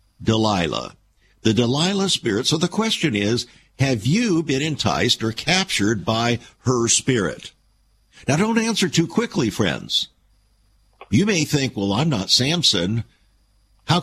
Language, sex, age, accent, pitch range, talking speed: English, male, 60-79, American, 100-165 Hz, 135 wpm